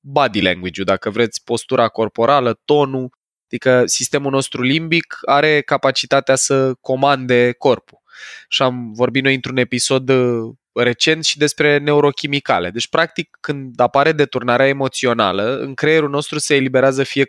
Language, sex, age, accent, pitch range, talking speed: Romanian, male, 20-39, native, 115-150 Hz, 130 wpm